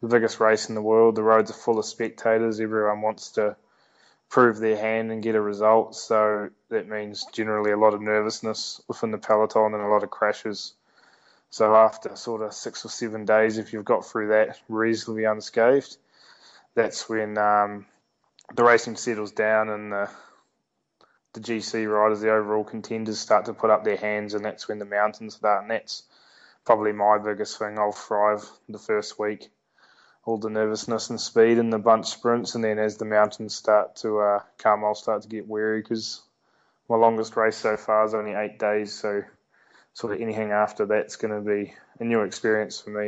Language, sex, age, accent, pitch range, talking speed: English, male, 20-39, Australian, 105-110 Hz, 195 wpm